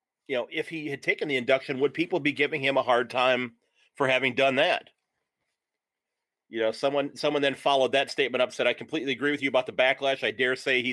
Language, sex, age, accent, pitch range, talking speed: English, male, 40-59, American, 120-140 Hz, 230 wpm